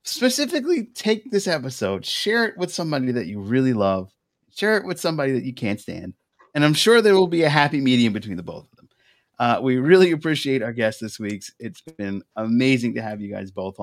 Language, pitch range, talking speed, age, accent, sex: English, 105-130 Hz, 215 wpm, 30-49, American, male